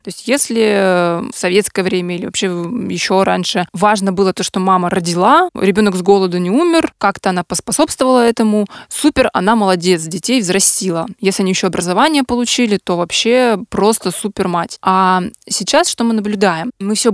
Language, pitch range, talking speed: Russian, 185-220 Hz, 165 wpm